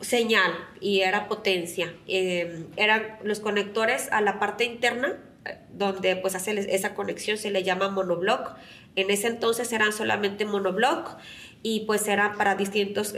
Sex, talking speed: female, 150 wpm